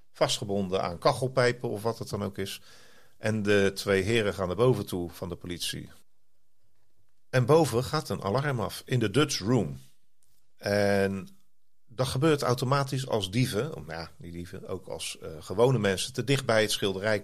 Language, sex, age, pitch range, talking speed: Dutch, male, 40-59, 100-130 Hz, 175 wpm